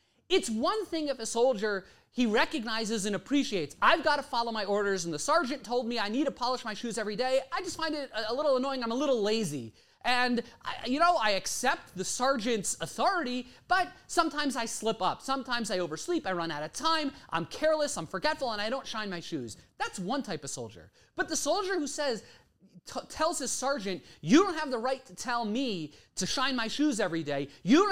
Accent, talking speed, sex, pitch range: American, 215 wpm, male, 220-305 Hz